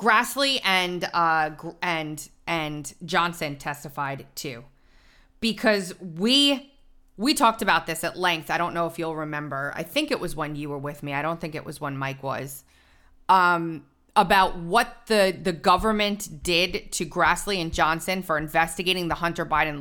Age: 20-39